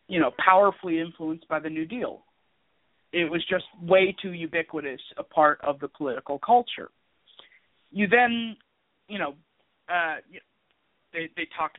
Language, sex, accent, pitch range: English, male, American, 155-200 Hz